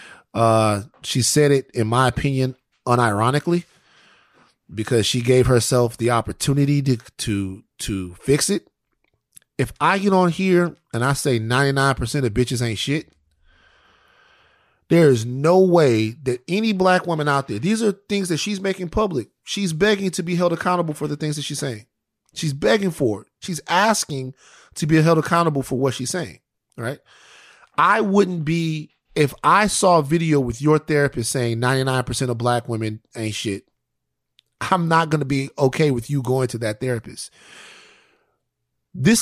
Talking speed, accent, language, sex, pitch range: 170 wpm, American, English, male, 110-155 Hz